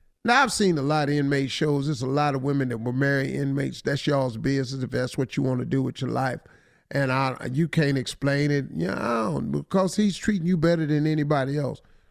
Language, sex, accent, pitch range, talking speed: English, male, American, 140-225 Hz, 235 wpm